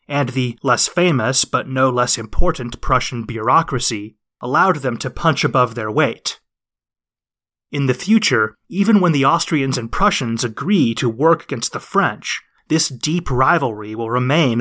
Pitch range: 120-155 Hz